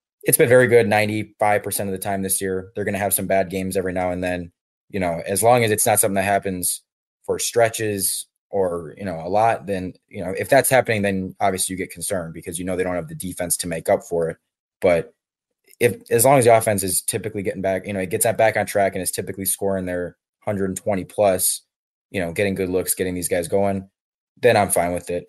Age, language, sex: 20-39, English, male